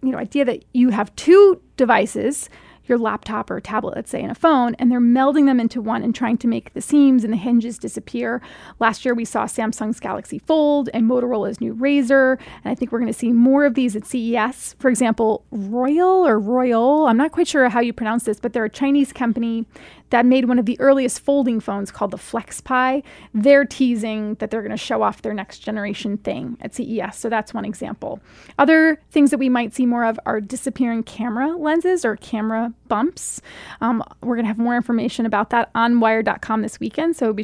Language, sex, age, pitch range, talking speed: English, female, 30-49, 225-265 Hz, 210 wpm